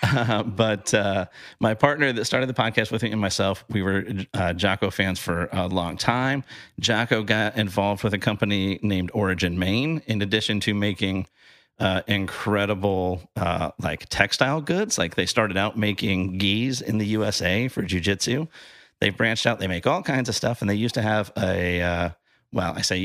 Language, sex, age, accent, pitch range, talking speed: English, male, 30-49, American, 95-115 Hz, 185 wpm